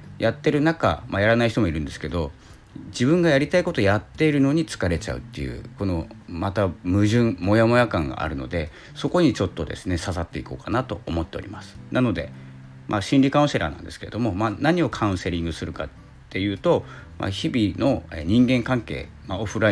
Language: Japanese